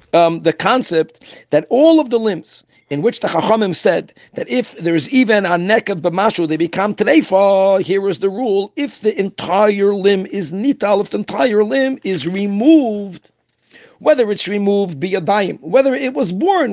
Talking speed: 180 wpm